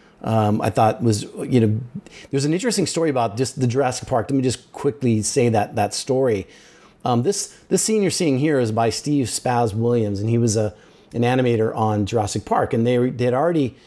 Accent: American